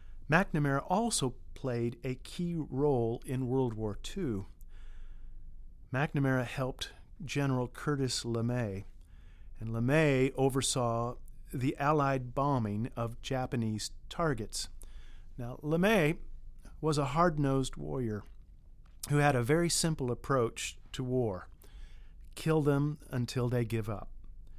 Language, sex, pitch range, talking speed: English, male, 100-140 Hz, 105 wpm